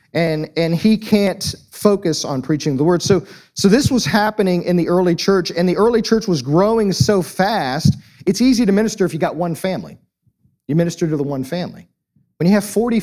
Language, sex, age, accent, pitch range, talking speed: English, male, 40-59, American, 150-205 Hz, 205 wpm